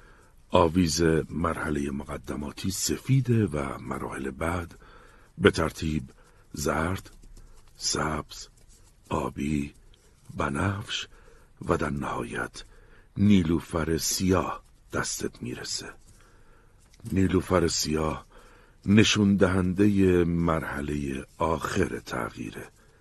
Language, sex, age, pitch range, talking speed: Persian, male, 60-79, 75-100 Hz, 70 wpm